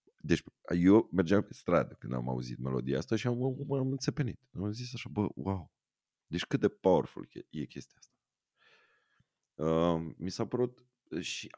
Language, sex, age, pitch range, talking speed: Romanian, male, 30-49, 70-115 Hz, 165 wpm